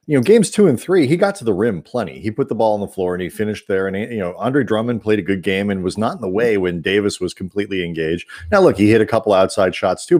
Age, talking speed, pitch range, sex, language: 40-59, 310 wpm, 100-125 Hz, male, English